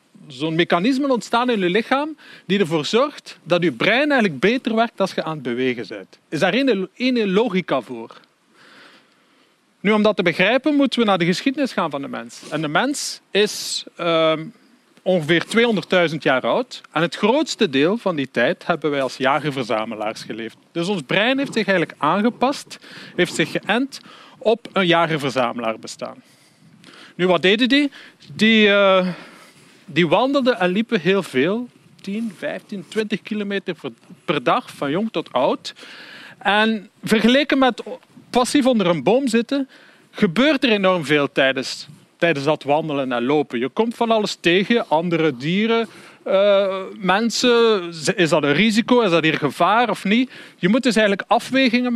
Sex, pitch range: male, 165-235 Hz